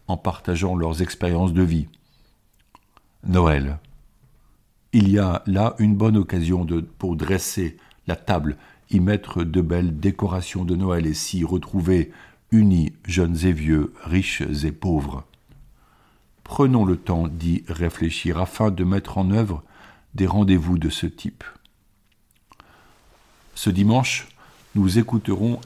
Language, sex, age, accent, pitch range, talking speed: French, male, 50-69, French, 85-105 Hz, 125 wpm